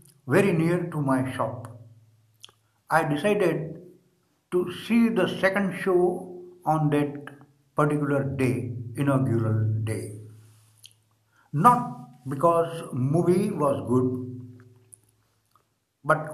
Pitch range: 115-170 Hz